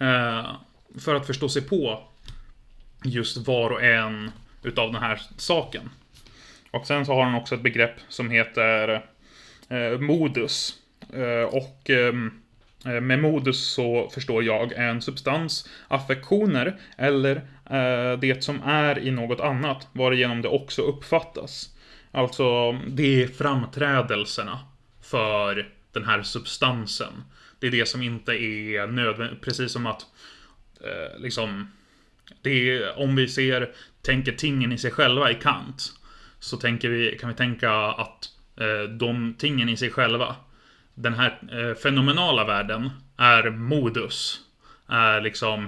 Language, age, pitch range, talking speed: Swedish, 20-39, 115-130 Hz, 130 wpm